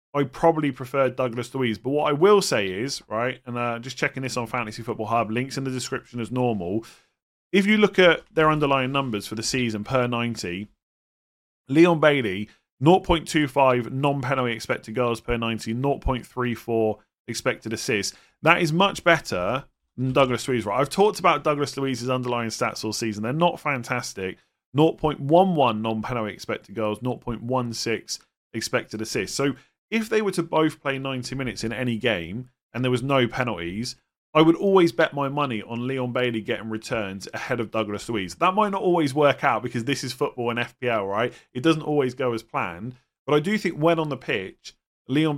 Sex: male